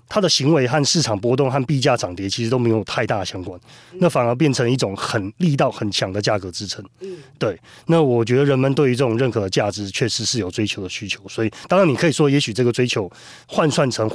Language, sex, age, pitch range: Chinese, male, 30-49, 110-145 Hz